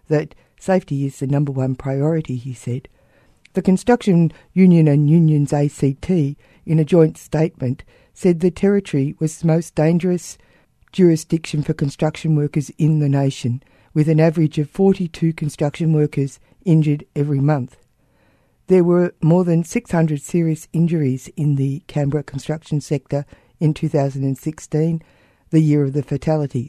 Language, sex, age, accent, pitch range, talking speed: English, female, 60-79, Australian, 140-170 Hz, 140 wpm